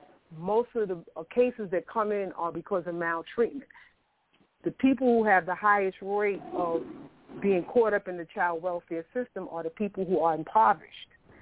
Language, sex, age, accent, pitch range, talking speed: English, female, 40-59, American, 170-205 Hz, 175 wpm